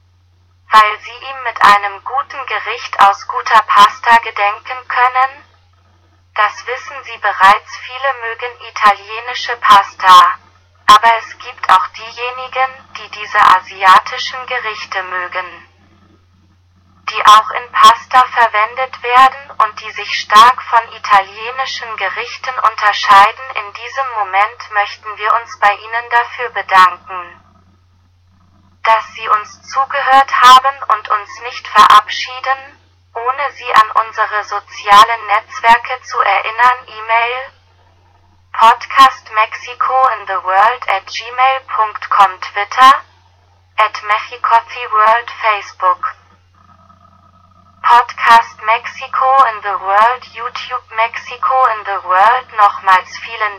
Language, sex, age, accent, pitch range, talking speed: Spanish, female, 20-39, German, 185-240 Hz, 105 wpm